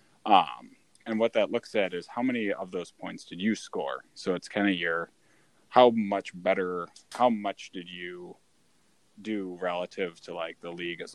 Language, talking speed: English, 185 wpm